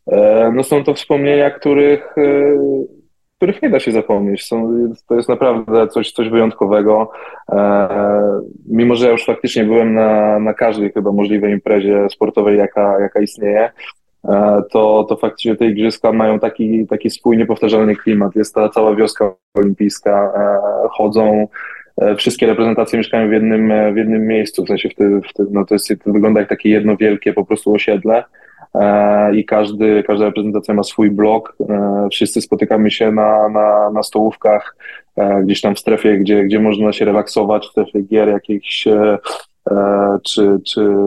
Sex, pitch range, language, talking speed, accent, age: male, 105-110 Hz, Polish, 155 wpm, native, 20-39